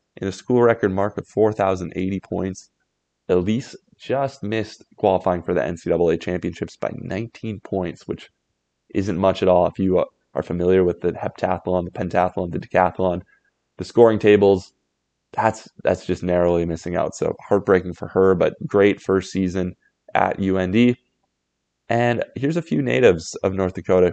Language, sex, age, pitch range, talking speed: English, male, 20-39, 90-100 Hz, 155 wpm